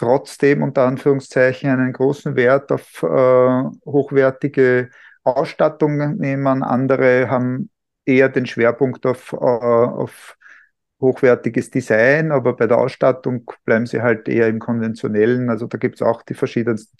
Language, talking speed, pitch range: German, 135 wpm, 125-150 Hz